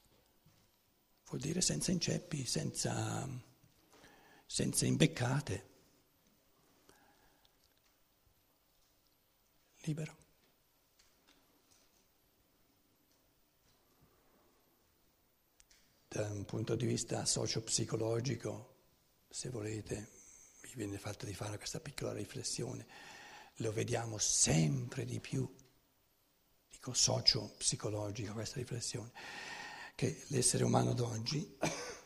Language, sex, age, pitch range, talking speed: Italian, male, 60-79, 115-165 Hz, 70 wpm